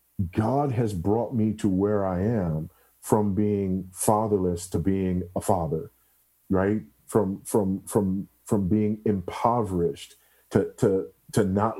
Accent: American